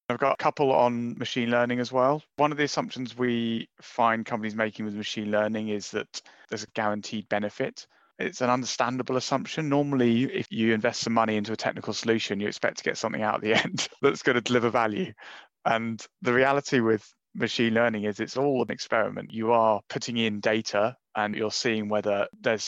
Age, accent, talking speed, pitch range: 30-49, British, 200 wpm, 105-120 Hz